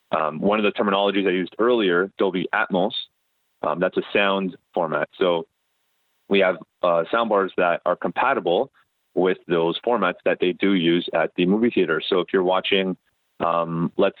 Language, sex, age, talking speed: English, male, 30-49, 170 wpm